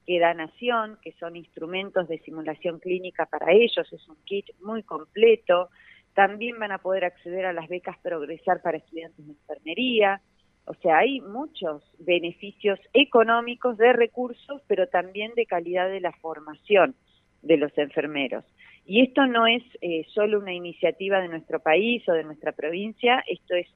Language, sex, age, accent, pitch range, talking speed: Spanish, female, 40-59, Argentinian, 165-220 Hz, 160 wpm